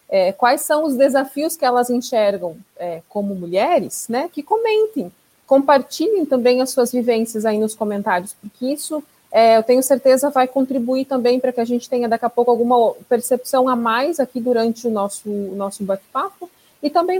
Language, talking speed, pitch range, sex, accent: Portuguese, 180 wpm, 215-265 Hz, female, Brazilian